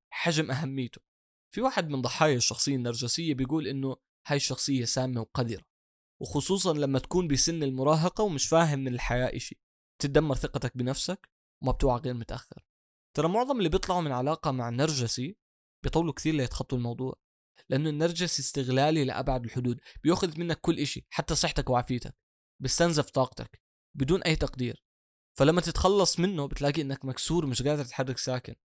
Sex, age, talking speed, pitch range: male, 20-39, 140 wpm, 125-160 Hz